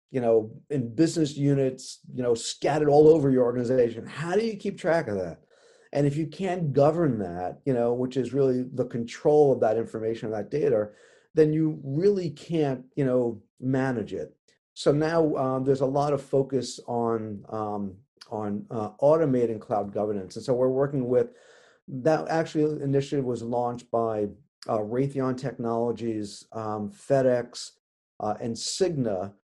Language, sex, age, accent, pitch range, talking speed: English, male, 40-59, American, 115-145 Hz, 160 wpm